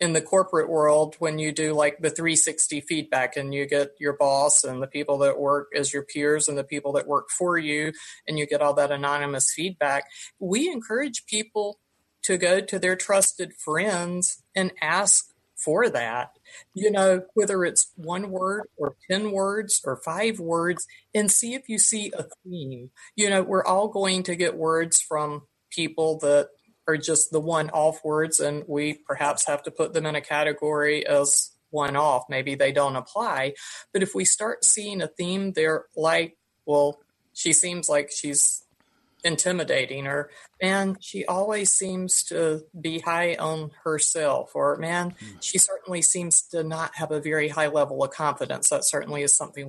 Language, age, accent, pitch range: English, 50-69, American, 145-180 Hz